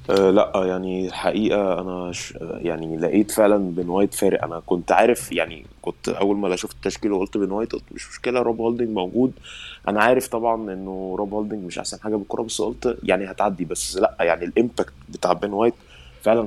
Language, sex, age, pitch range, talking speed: Arabic, male, 20-39, 90-110 Hz, 190 wpm